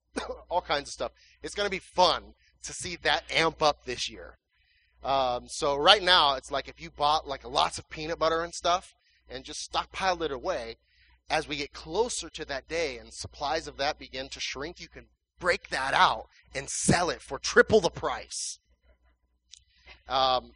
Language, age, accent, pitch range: English, 30-49, American, 120-155 Hz